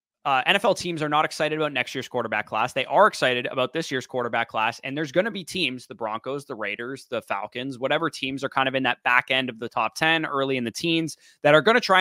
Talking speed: 265 wpm